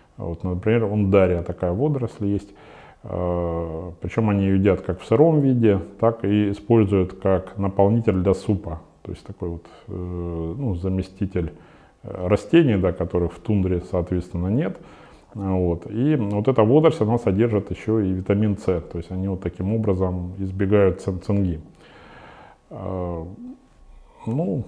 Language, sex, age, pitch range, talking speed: Russian, male, 30-49, 90-110 Hz, 130 wpm